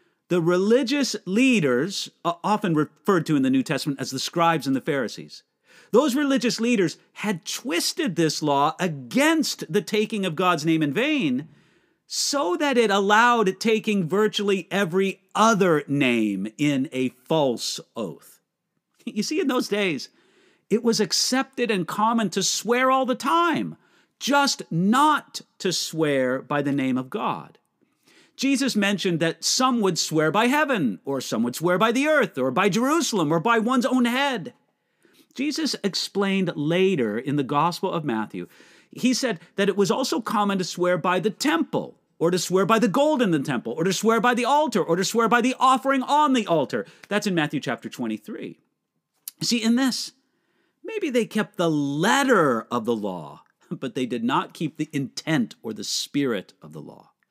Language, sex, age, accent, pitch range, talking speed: English, male, 50-69, American, 160-255 Hz, 170 wpm